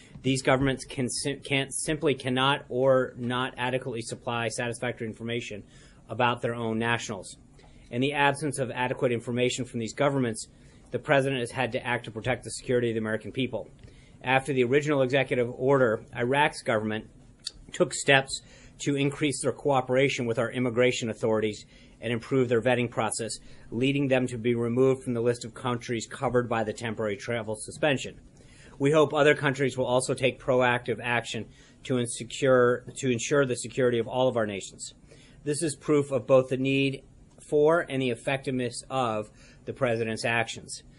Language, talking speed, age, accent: English, 160 wpm, 40-59, American